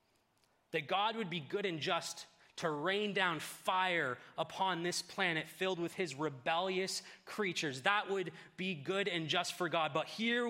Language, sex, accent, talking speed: English, male, American, 165 wpm